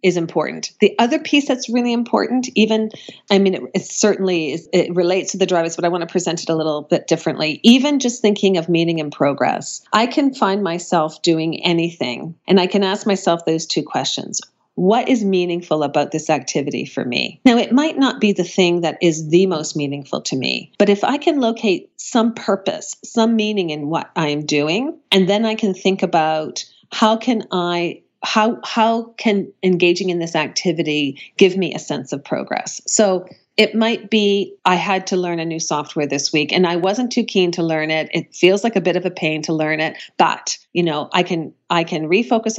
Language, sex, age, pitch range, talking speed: English, female, 40-59, 160-210 Hz, 210 wpm